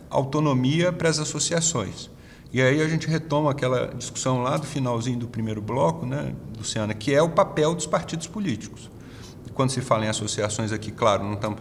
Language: Portuguese